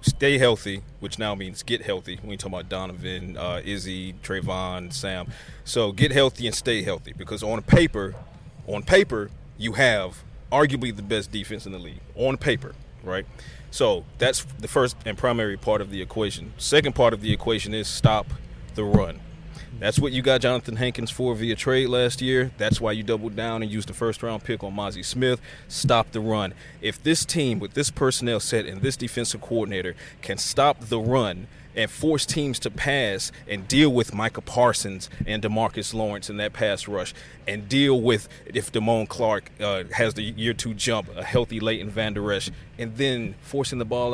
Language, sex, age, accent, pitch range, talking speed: English, male, 30-49, American, 105-125 Hz, 190 wpm